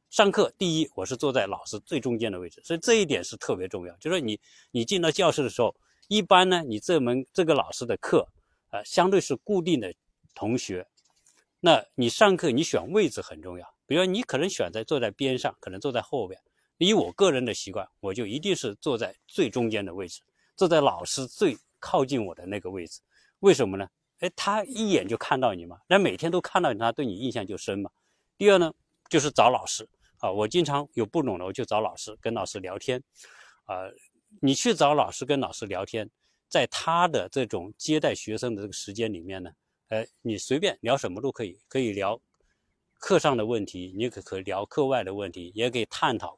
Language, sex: Chinese, male